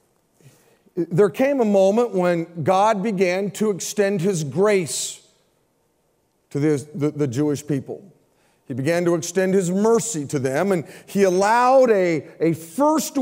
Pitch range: 155-195 Hz